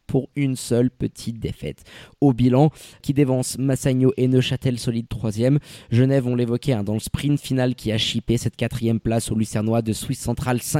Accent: French